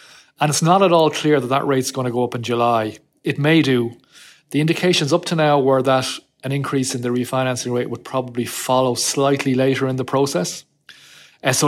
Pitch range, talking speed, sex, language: 120-140 Hz, 205 wpm, male, English